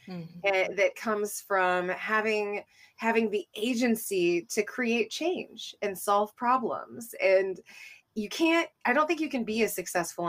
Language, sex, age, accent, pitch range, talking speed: English, female, 20-39, American, 180-235 Hz, 140 wpm